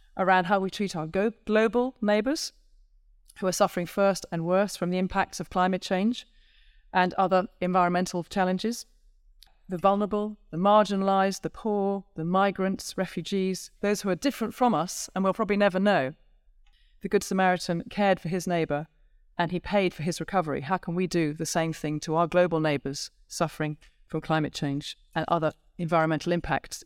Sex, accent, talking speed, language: female, British, 170 wpm, English